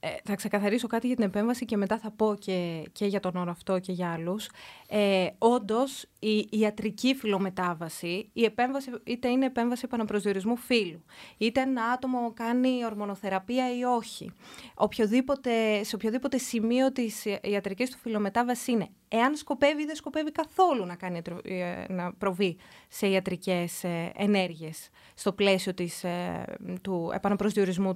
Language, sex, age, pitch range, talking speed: Greek, female, 20-39, 190-245 Hz, 140 wpm